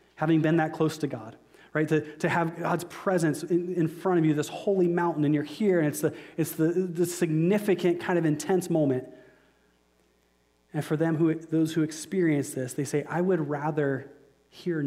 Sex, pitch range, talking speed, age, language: male, 140-170 Hz, 195 wpm, 30-49, English